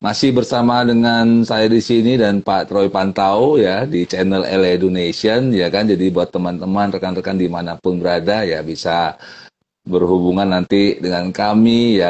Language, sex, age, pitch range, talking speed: Indonesian, male, 40-59, 95-110 Hz, 150 wpm